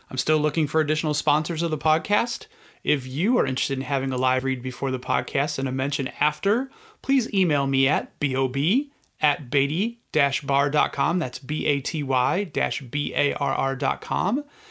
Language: English